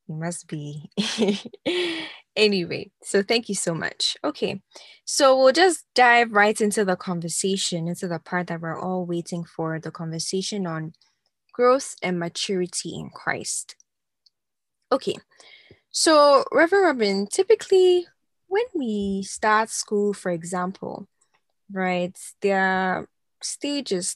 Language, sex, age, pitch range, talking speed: English, female, 10-29, 180-235 Hz, 120 wpm